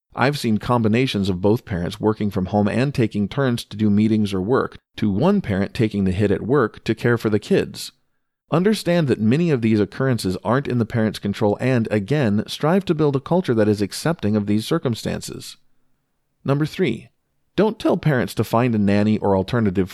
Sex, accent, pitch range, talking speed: male, American, 100-135 Hz, 195 wpm